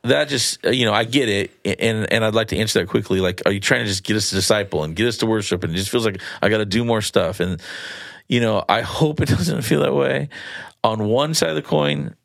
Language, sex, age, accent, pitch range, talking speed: English, male, 40-59, American, 95-115 Hz, 280 wpm